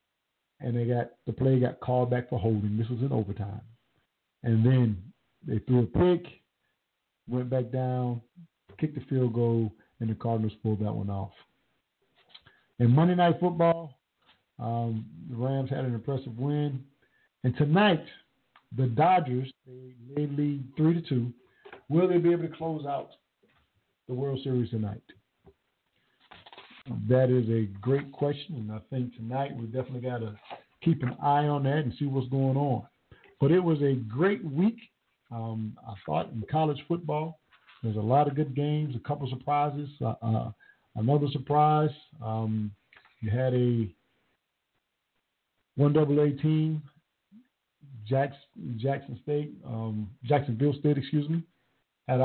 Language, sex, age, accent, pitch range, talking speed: English, male, 50-69, American, 120-150 Hz, 150 wpm